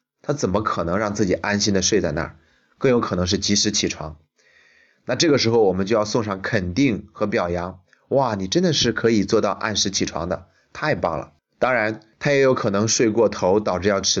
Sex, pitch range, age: male, 90-110 Hz, 30-49